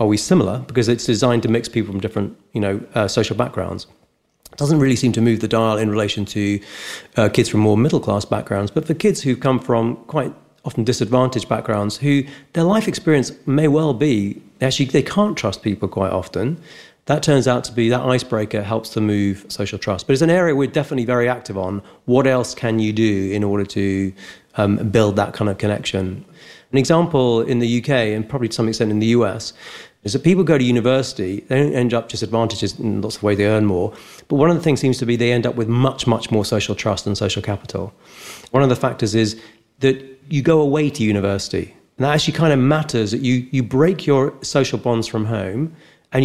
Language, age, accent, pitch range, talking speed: English, 30-49, British, 105-135 Hz, 220 wpm